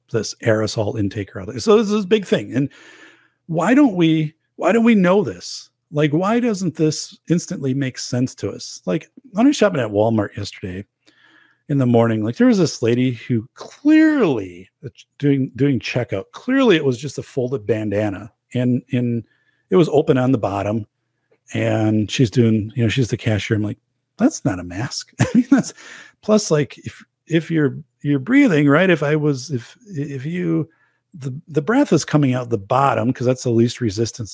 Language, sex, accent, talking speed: English, male, American, 190 wpm